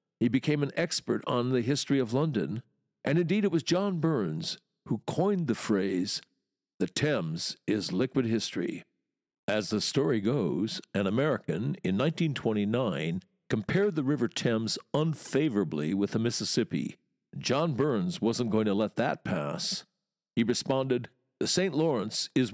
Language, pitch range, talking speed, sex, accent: English, 115-160 Hz, 145 wpm, male, American